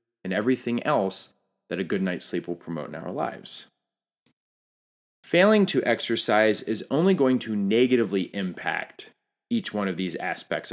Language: English